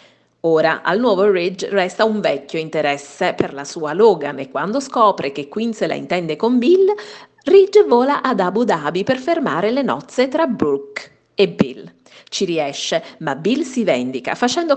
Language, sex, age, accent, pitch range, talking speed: Italian, female, 40-59, native, 170-255 Hz, 170 wpm